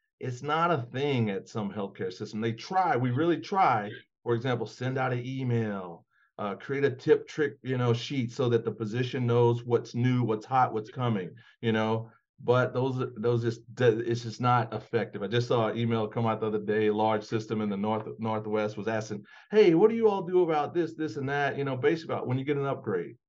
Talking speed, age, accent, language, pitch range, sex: 220 wpm, 40-59, American, English, 115-145 Hz, male